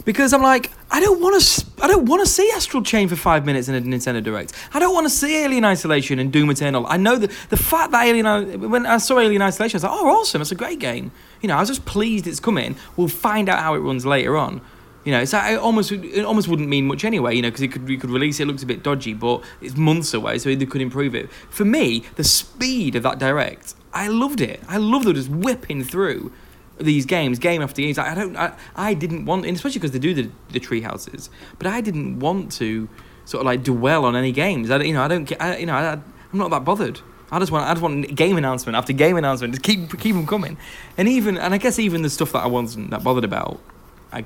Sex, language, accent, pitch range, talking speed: male, English, British, 130-200 Hz, 260 wpm